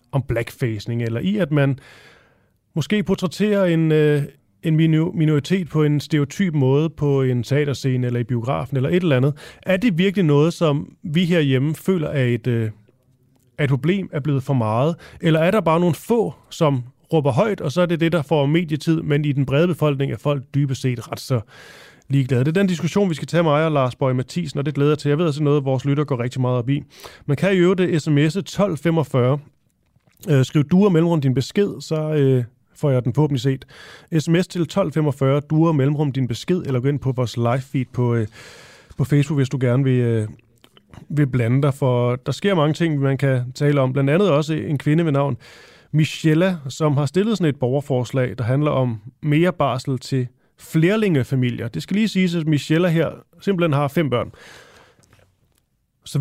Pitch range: 130-165 Hz